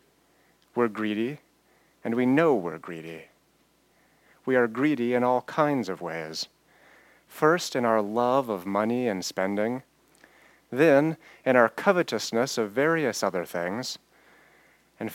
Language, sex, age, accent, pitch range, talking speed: English, male, 30-49, American, 110-150 Hz, 125 wpm